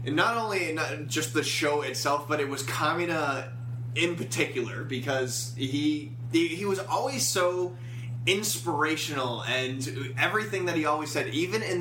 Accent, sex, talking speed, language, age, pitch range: American, male, 140 wpm, English, 20-39, 125-155 Hz